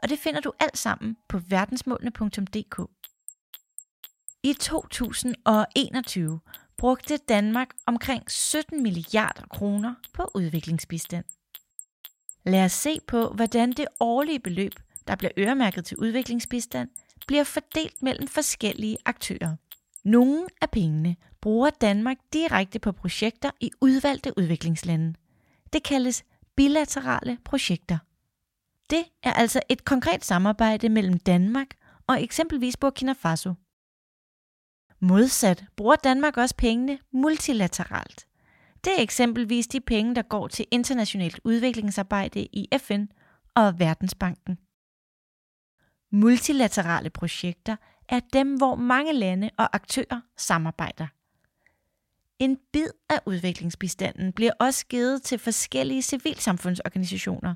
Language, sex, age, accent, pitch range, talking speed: Danish, female, 30-49, native, 190-265 Hz, 105 wpm